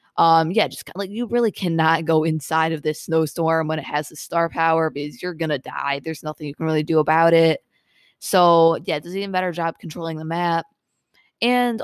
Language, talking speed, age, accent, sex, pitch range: English, 210 wpm, 20-39, American, female, 160-180 Hz